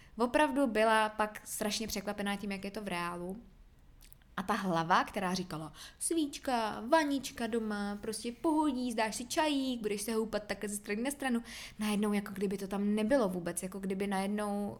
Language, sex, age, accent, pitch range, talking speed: Czech, female, 20-39, native, 185-215 Hz, 170 wpm